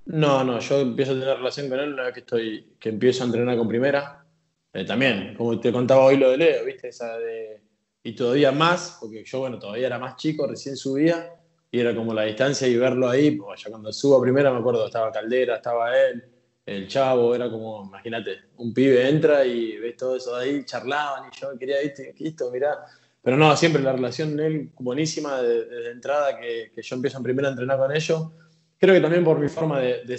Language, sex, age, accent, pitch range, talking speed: Spanish, male, 20-39, Argentinian, 125-160 Hz, 230 wpm